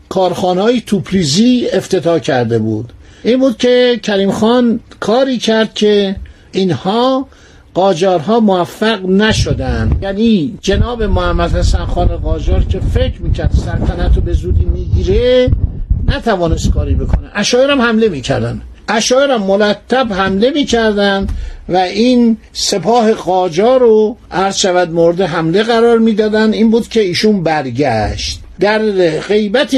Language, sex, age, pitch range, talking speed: Persian, male, 60-79, 160-220 Hz, 120 wpm